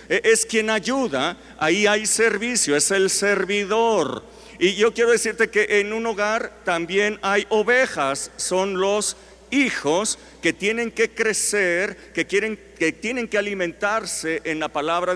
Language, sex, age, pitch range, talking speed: English, male, 50-69, 155-220 Hz, 140 wpm